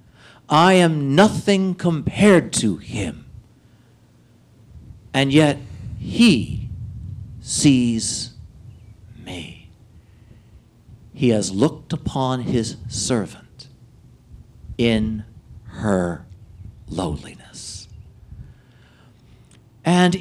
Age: 50-69